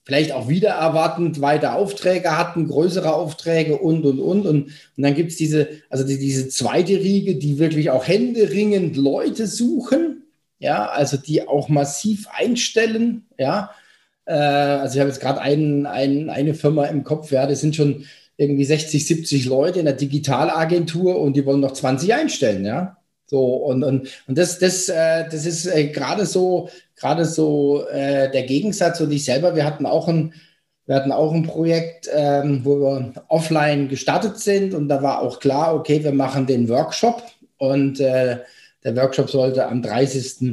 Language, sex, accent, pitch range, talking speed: German, male, German, 140-170 Hz, 165 wpm